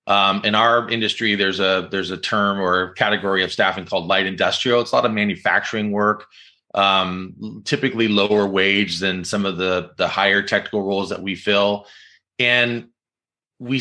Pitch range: 95-120 Hz